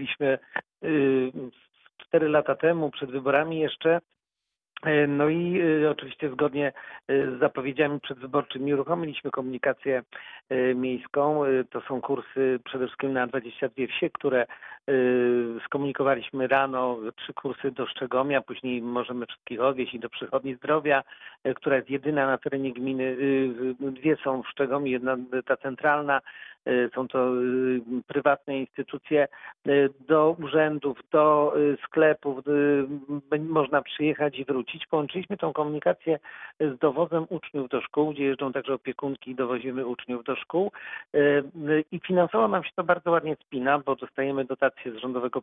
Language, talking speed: Polish, 125 wpm